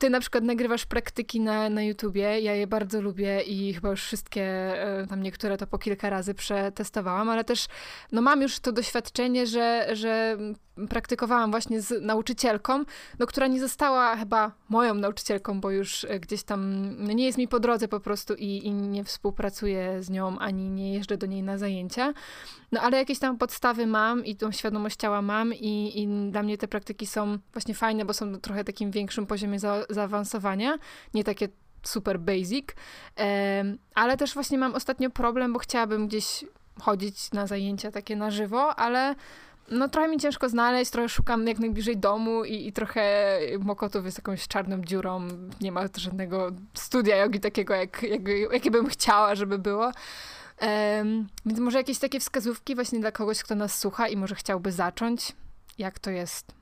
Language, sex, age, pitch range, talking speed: Polish, female, 20-39, 200-235 Hz, 170 wpm